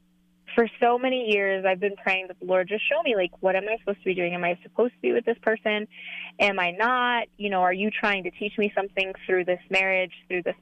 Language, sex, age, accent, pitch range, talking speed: English, female, 20-39, American, 180-215 Hz, 260 wpm